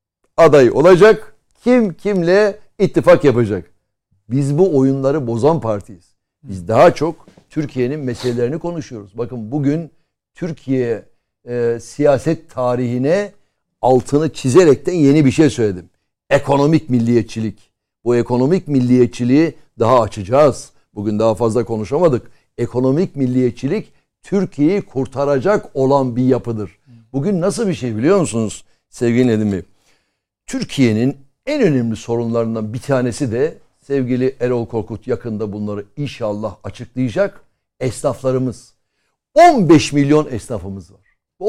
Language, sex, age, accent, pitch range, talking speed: Turkish, male, 60-79, native, 115-155 Hz, 110 wpm